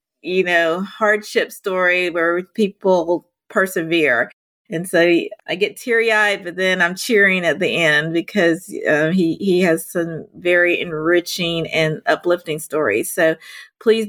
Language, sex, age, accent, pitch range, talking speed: English, female, 40-59, American, 170-220 Hz, 135 wpm